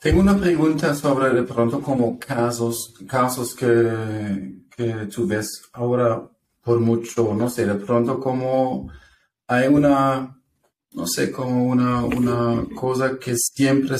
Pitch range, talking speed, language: 110-130 Hz, 135 wpm, English